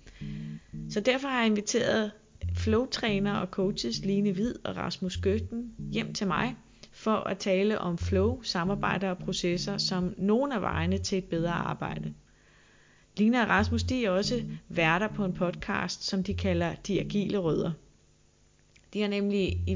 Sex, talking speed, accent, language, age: female, 160 wpm, native, Danish, 30-49